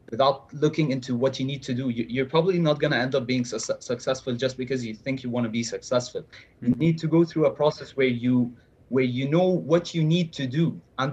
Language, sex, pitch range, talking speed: Hindi, male, 125-150 Hz, 245 wpm